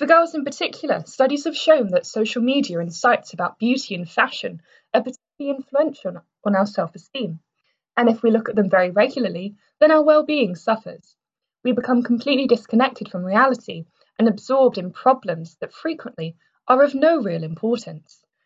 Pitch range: 195-265 Hz